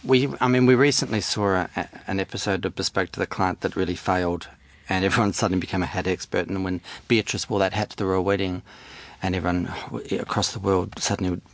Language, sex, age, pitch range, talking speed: English, male, 40-59, 95-125 Hz, 210 wpm